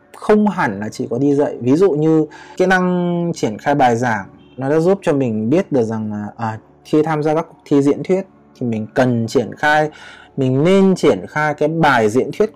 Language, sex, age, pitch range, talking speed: Vietnamese, male, 20-39, 115-165 Hz, 225 wpm